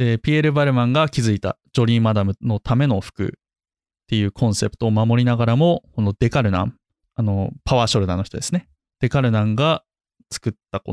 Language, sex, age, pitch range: Japanese, male, 20-39, 105-140 Hz